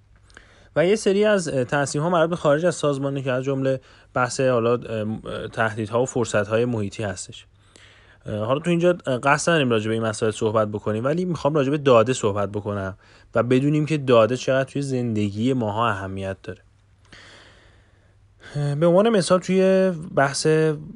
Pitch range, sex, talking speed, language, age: 105-135 Hz, male, 150 wpm, Persian, 30-49